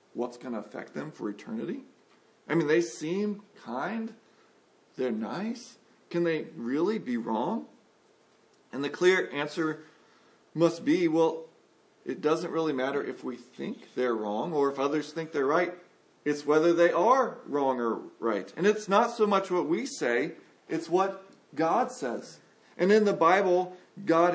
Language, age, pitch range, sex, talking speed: English, 40-59, 150-195 Hz, male, 160 wpm